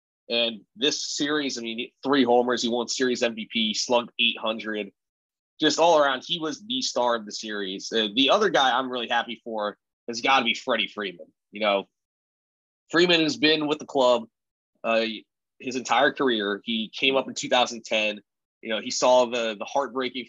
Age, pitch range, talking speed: 20-39, 110-135 Hz, 180 wpm